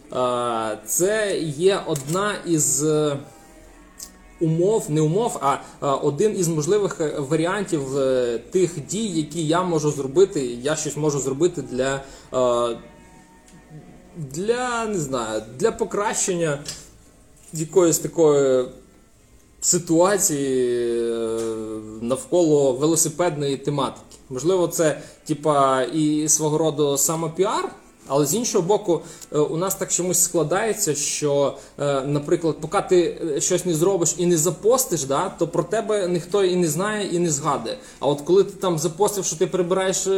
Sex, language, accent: male, Ukrainian, native